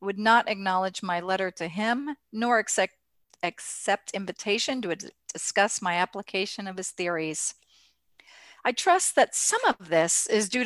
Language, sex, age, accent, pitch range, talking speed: English, female, 50-69, American, 185-245 Hz, 145 wpm